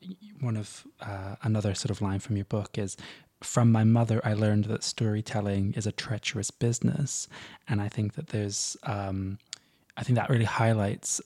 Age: 20-39